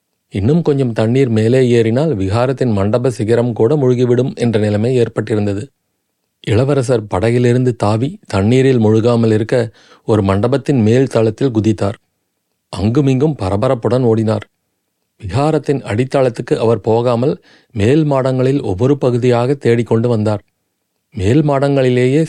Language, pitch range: Tamil, 110-135 Hz